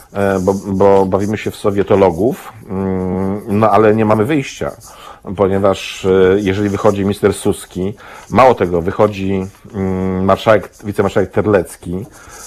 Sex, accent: male, native